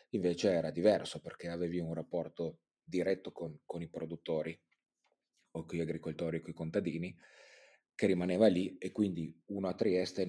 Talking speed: 165 wpm